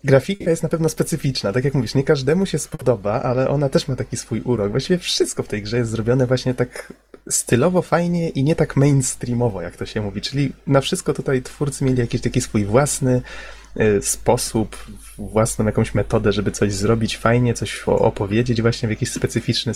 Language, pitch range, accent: Polish, 110-140 Hz, native